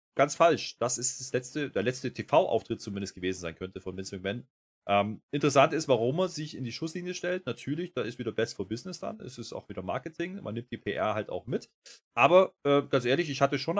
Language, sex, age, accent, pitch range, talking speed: German, male, 30-49, German, 105-140 Hz, 230 wpm